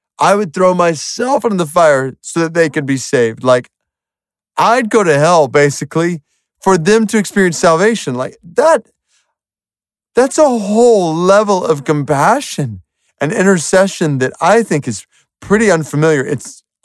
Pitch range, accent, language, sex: 115-165 Hz, American, English, male